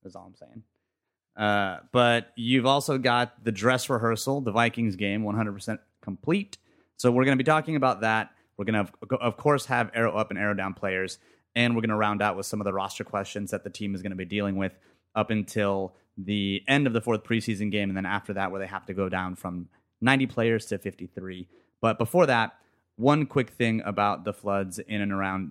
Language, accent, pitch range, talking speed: English, American, 100-115 Hz, 220 wpm